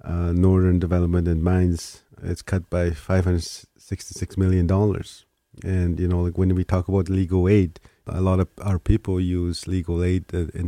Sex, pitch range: male, 85-95 Hz